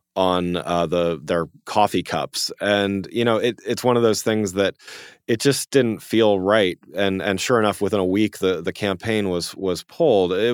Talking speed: 200 wpm